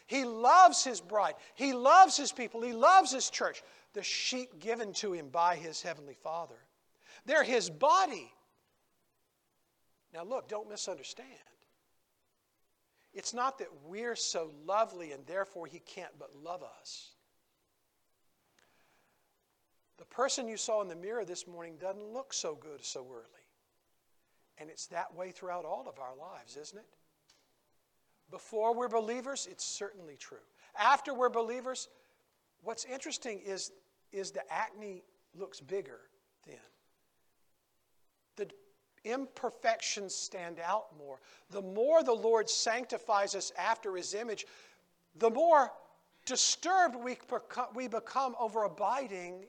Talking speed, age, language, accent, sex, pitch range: 130 wpm, 50-69, English, American, male, 190-250 Hz